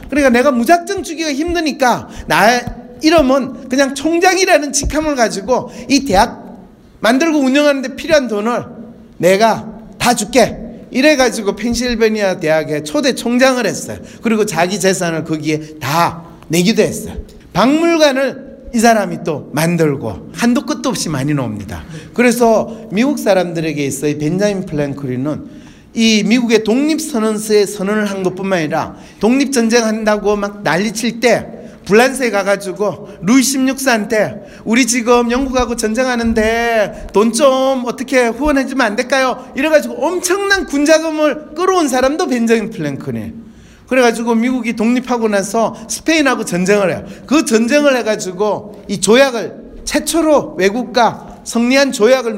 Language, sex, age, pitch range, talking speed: English, male, 40-59, 200-265 Hz, 115 wpm